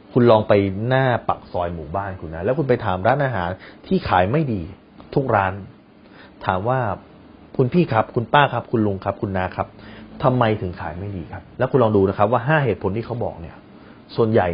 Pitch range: 100-125 Hz